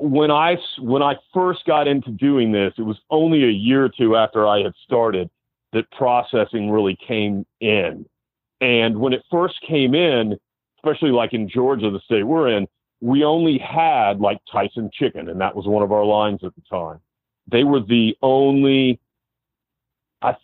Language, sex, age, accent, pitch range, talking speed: English, male, 40-59, American, 110-135 Hz, 175 wpm